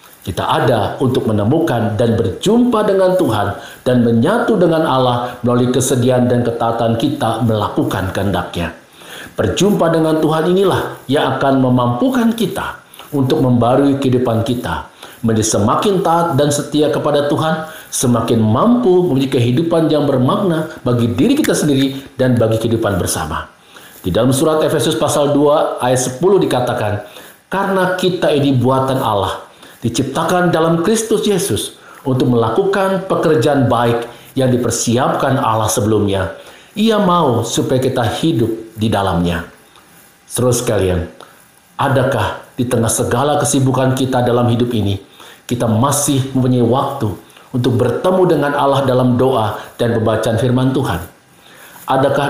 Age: 50-69